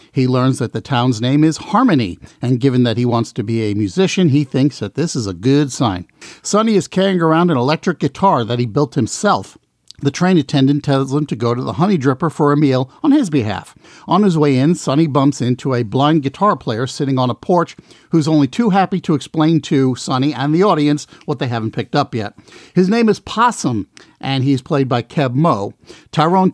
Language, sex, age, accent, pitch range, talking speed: English, male, 50-69, American, 130-170 Hz, 215 wpm